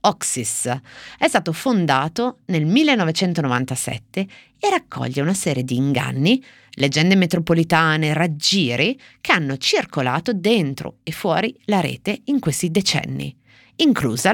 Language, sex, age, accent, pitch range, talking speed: Italian, female, 30-49, native, 130-195 Hz, 115 wpm